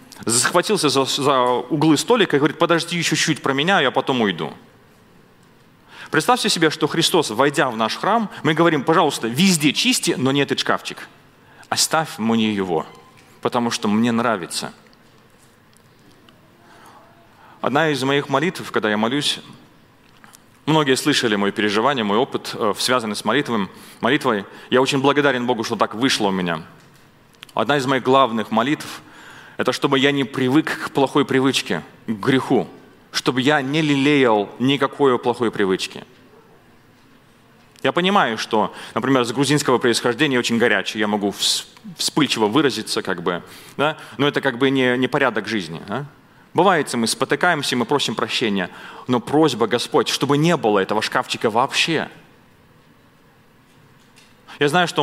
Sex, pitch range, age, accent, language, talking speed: male, 120-155 Hz, 30-49, native, Russian, 140 wpm